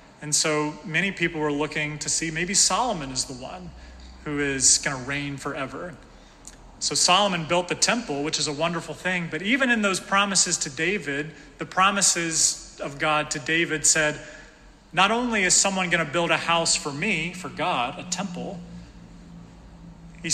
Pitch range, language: 150-180 Hz, English